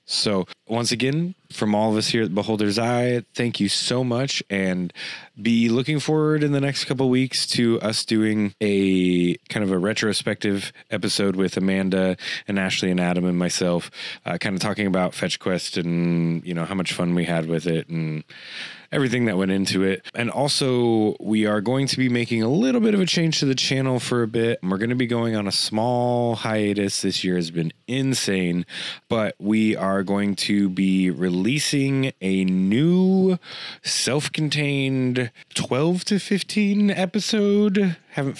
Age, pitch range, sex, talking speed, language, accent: 20-39, 95-130 Hz, male, 180 wpm, English, American